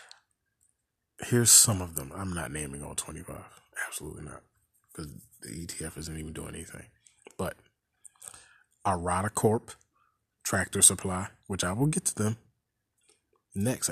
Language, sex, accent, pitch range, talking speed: English, male, American, 90-115 Hz, 130 wpm